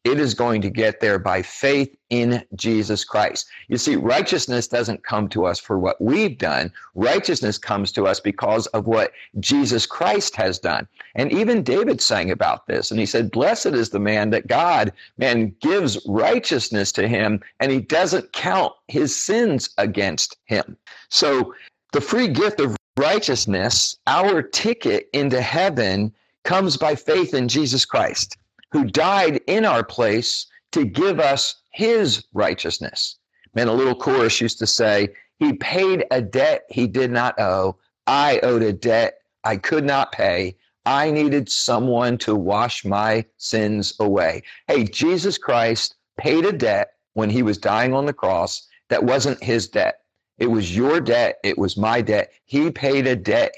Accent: American